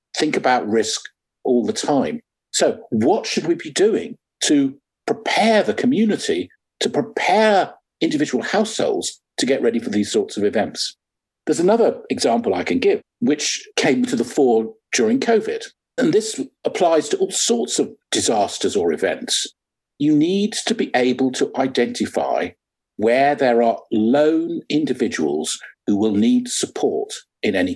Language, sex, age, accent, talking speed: English, male, 50-69, British, 150 wpm